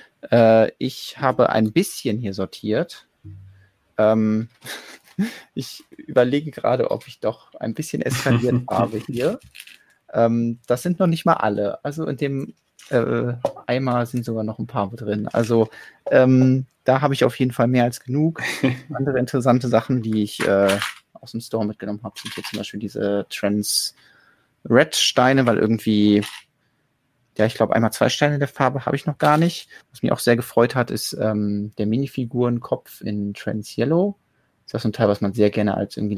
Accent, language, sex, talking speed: German, German, male, 160 wpm